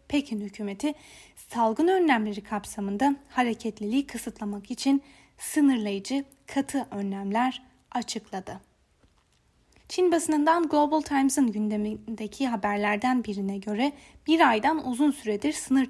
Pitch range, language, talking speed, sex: 210-275 Hz, Turkish, 95 wpm, female